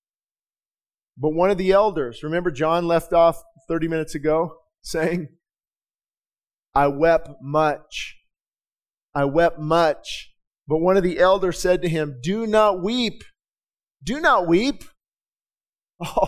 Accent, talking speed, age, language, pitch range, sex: American, 125 wpm, 40-59, English, 180-235 Hz, male